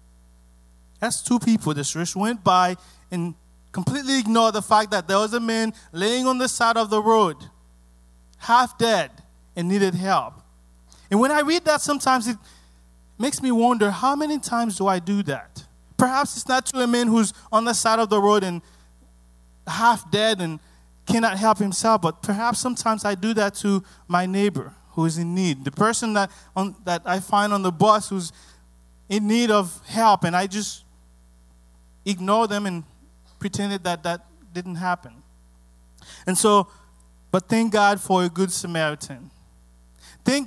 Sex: male